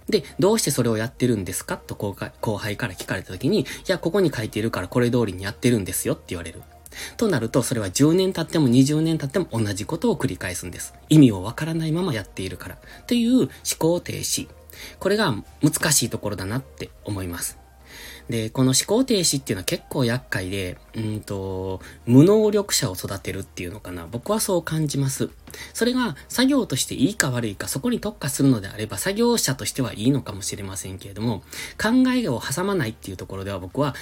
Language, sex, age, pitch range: Japanese, male, 20-39, 105-160 Hz